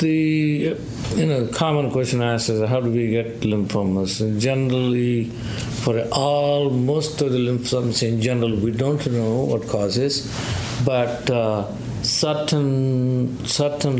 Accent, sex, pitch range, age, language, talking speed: Indian, male, 115-135 Hz, 50-69, English, 135 wpm